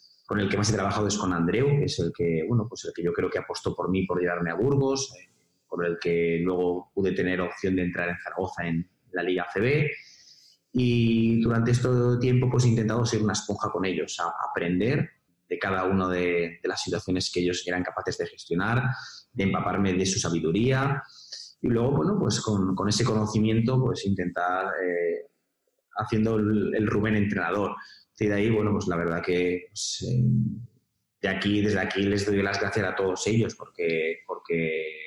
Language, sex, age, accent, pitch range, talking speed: Spanish, male, 30-49, Spanish, 90-115 Hz, 195 wpm